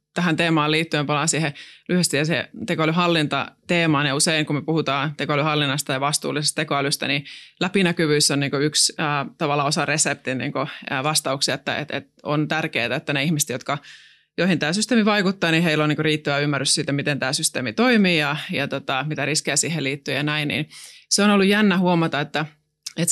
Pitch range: 145-170 Hz